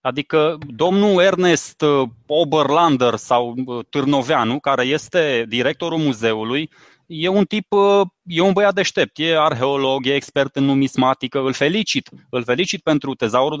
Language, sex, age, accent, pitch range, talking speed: Romanian, male, 20-39, native, 135-185 Hz, 130 wpm